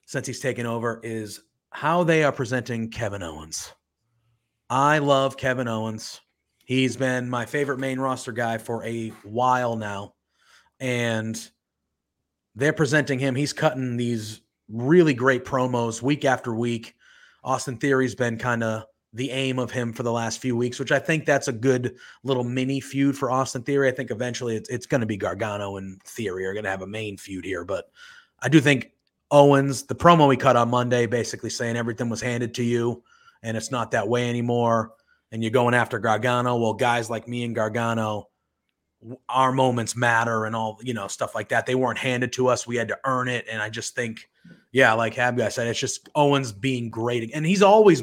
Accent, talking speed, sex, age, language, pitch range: American, 195 wpm, male, 30-49, English, 115-135 Hz